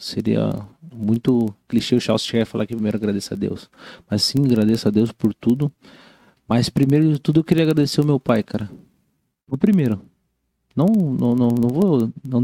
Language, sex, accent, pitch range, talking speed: Portuguese, male, Brazilian, 105-125 Hz, 185 wpm